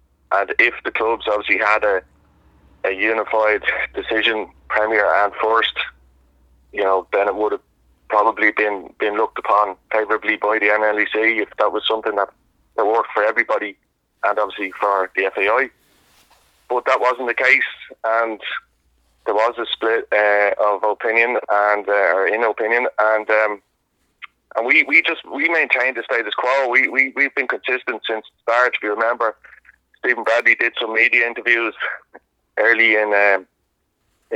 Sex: male